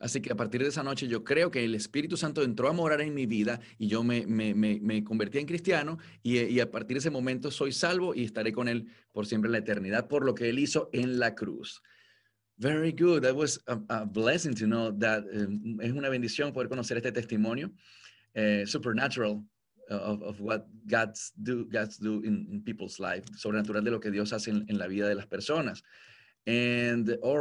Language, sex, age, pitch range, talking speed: English, male, 30-49, 110-145 Hz, 215 wpm